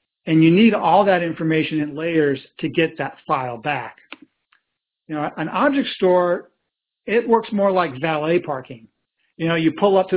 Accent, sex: American, male